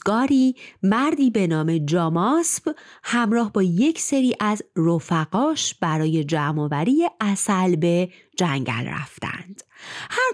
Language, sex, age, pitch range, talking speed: Persian, female, 30-49, 170-265 Hz, 105 wpm